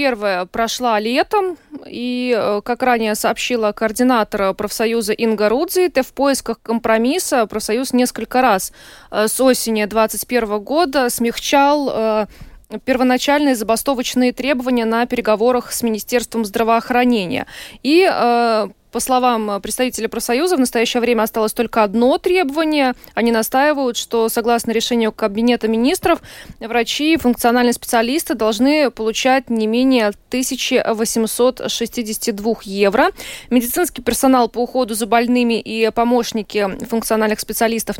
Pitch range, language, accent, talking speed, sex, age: 220-260 Hz, Russian, native, 105 wpm, female, 20-39